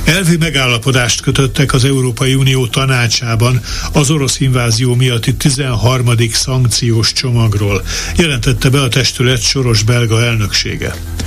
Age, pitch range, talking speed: 60-79, 110-135 Hz, 105 wpm